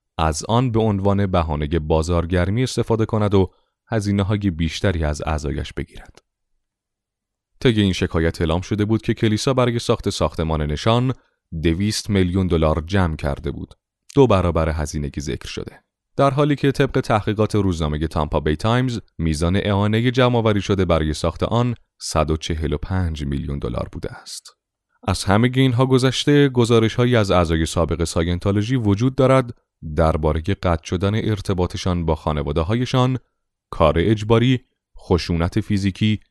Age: 30-49